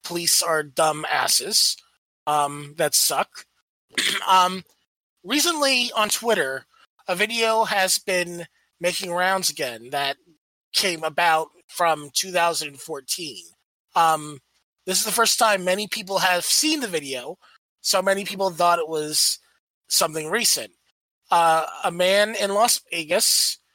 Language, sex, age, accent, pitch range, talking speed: English, male, 30-49, American, 175-220 Hz, 125 wpm